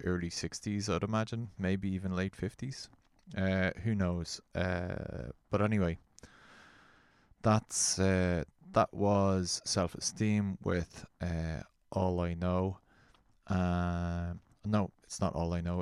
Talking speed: 120 wpm